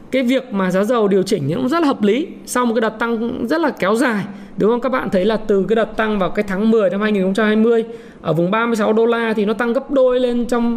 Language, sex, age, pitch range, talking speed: Vietnamese, male, 20-39, 210-255 Hz, 275 wpm